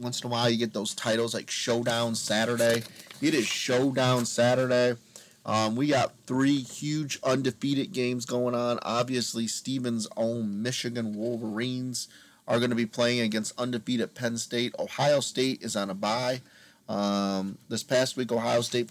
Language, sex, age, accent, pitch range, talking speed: English, male, 30-49, American, 115-130 Hz, 160 wpm